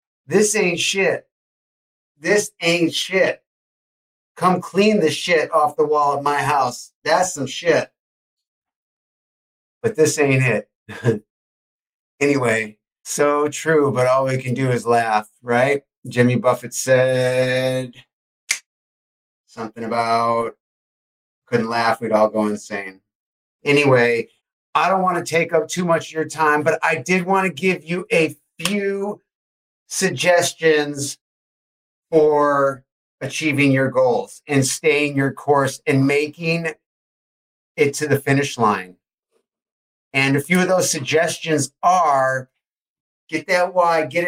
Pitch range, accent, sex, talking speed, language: 130-175 Hz, American, male, 125 wpm, English